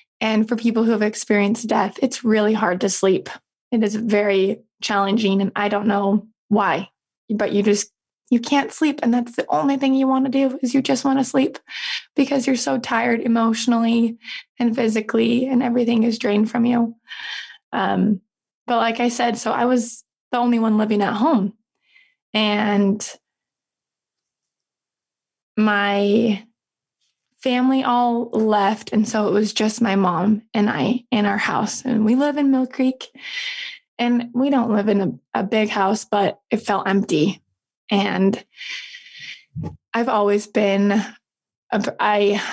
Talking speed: 155 wpm